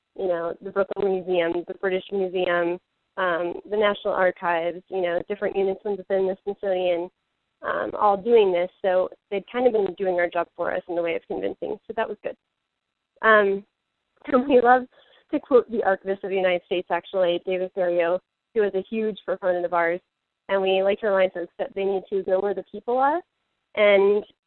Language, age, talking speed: English, 20-39, 195 wpm